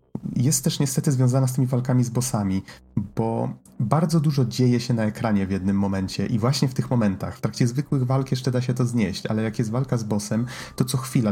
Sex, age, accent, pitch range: male, 30-49, native, 105-135 Hz